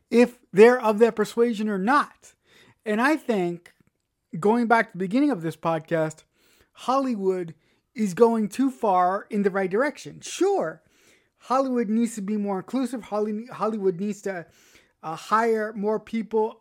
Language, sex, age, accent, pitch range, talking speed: English, male, 30-49, American, 185-235 Hz, 150 wpm